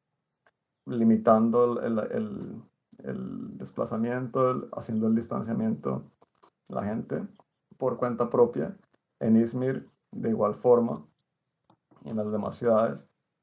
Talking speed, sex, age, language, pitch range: 105 wpm, male, 30-49, Spanish, 110-120 Hz